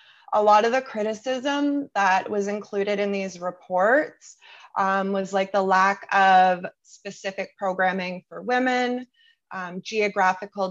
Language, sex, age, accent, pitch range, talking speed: English, female, 20-39, American, 185-235 Hz, 130 wpm